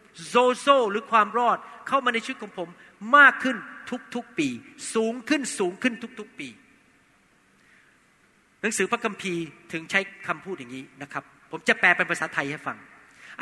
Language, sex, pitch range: Thai, male, 200-270 Hz